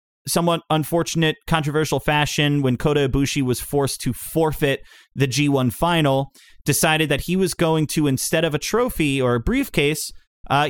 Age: 30-49